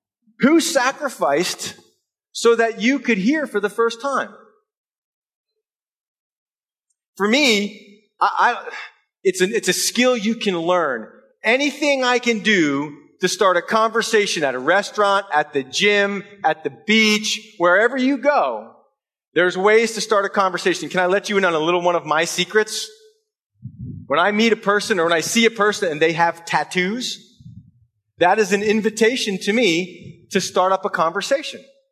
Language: English